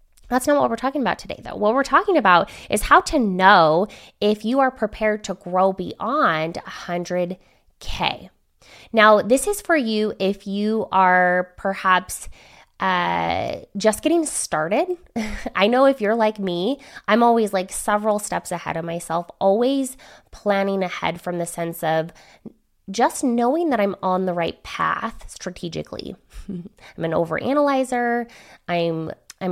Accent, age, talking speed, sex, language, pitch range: American, 20-39, 145 wpm, female, English, 175-235 Hz